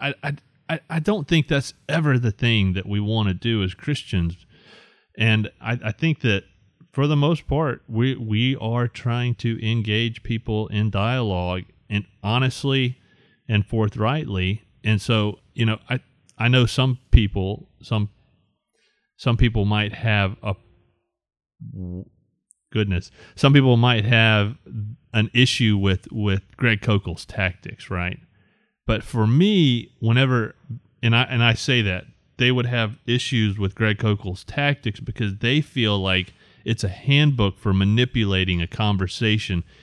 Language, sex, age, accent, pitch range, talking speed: English, male, 30-49, American, 100-125 Hz, 145 wpm